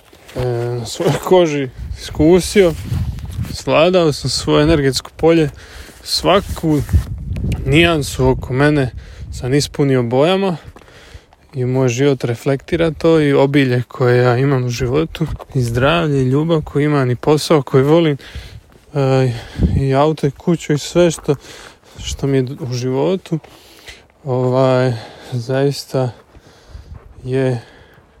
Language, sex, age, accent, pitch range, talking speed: Croatian, male, 20-39, Serbian, 115-145 Hz, 115 wpm